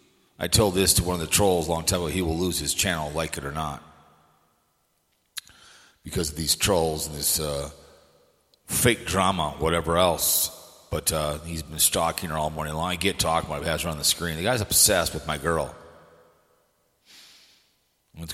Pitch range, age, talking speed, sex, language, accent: 80-100 Hz, 40-59, 185 wpm, male, English, American